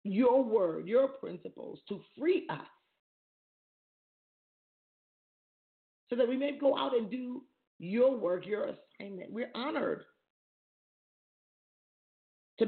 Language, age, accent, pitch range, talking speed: English, 40-59, American, 205-270 Hz, 105 wpm